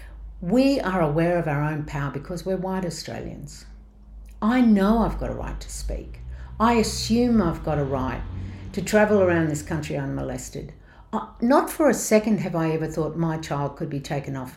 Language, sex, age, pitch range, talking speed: English, female, 60-79, 135-185 Hz, 185 wpm